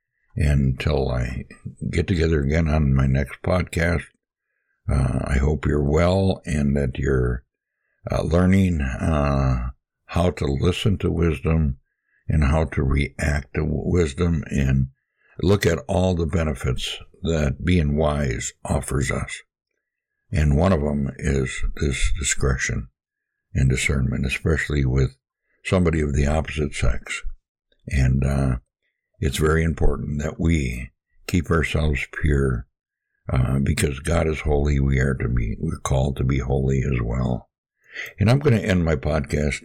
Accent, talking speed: American, 135 wpm